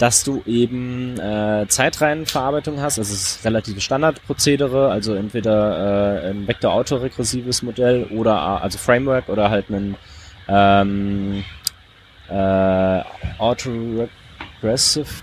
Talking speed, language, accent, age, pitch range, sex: 100 wpm, German, German, 20-39, 100-125 Hz, male